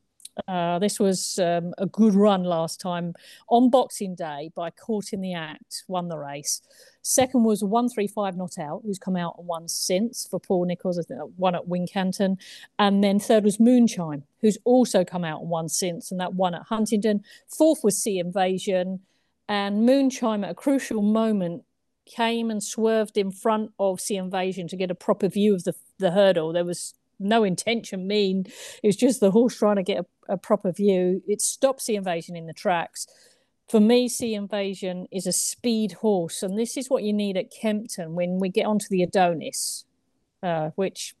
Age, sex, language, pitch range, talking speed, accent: 50-69, female, English, 180-215 Hz, 190 wpm, British